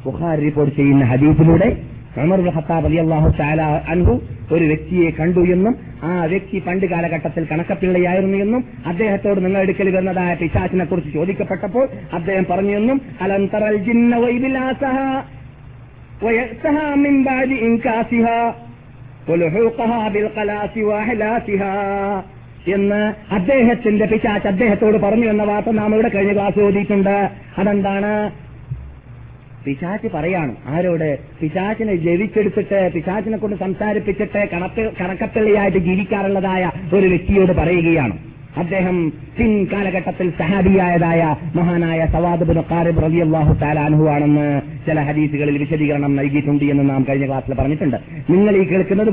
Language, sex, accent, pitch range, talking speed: Malayalam, male, native, 155-210 Hz, 80 wpm